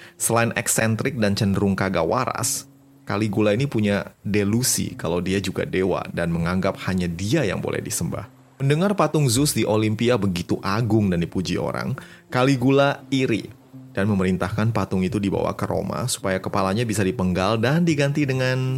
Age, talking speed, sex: 30-49, 150 wpm, male